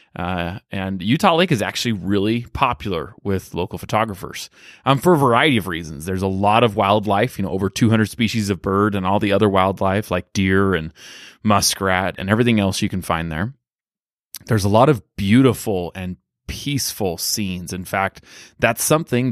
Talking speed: 175 wpm